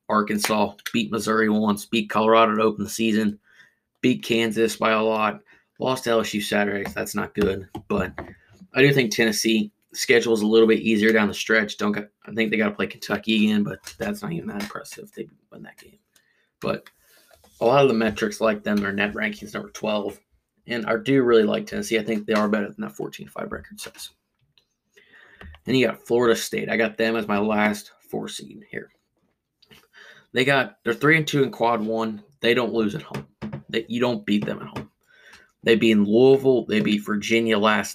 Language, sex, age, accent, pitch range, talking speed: English, male, 20-39, American, 105-115 Hz, 205 wpm